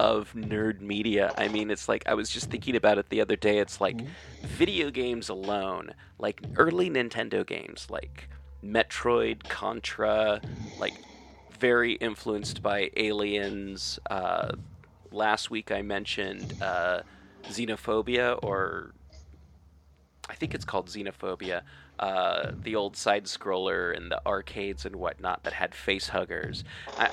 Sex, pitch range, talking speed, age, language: male, 95-115 Hz, 135 wpm, 30-49, English